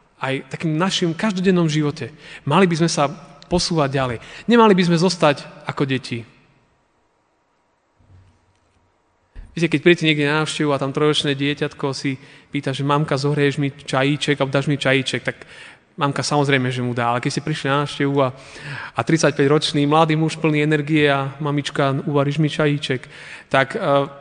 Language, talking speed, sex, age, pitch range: Slovak, 160 wpm, male, 30-49, 130-155 Hz